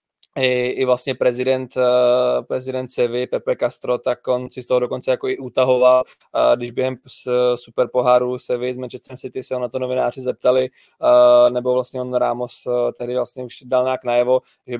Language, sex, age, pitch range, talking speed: Czech, male, 20-39, 120-130 Hz, 165 wpm